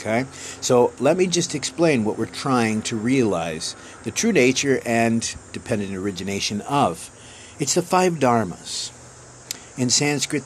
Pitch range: 90-130 Hz